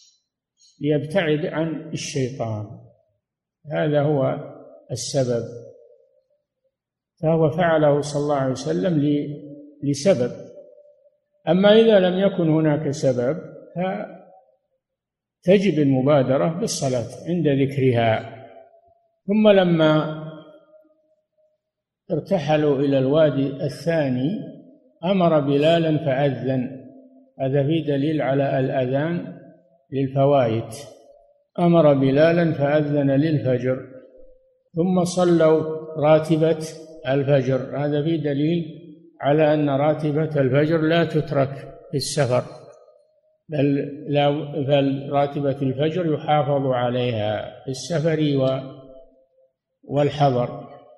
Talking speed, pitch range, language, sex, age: 80 wpm, 140-170 Hz, Arabic, male, 50-69